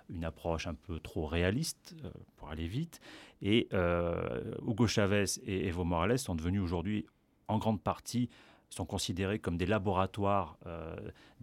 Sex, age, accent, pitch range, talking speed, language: male, 30-49, French, 90-110 Hz, 150 wpm, French